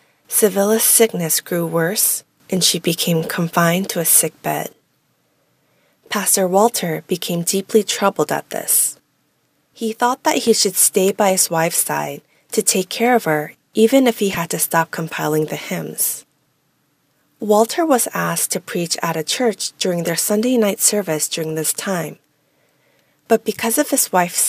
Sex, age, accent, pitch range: female, 20-39, American, 165-220 Hz